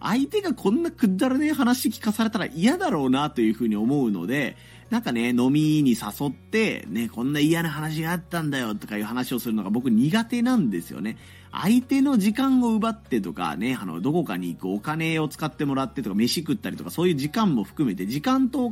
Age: 30-49